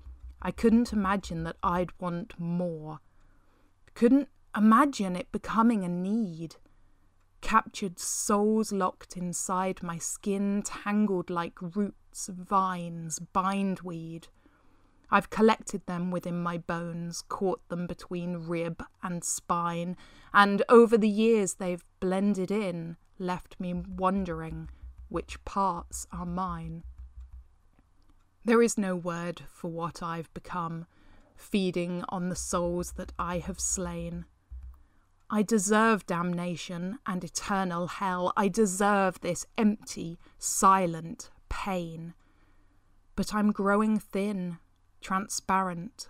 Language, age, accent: English, 20-39, British